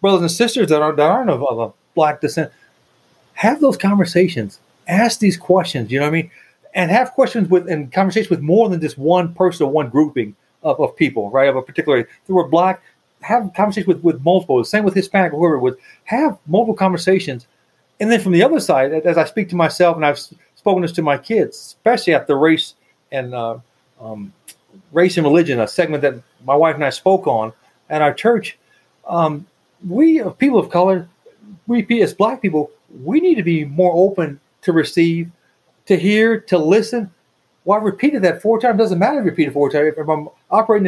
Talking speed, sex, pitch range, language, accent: 205 wpm, male, 150-200 Hz, English, American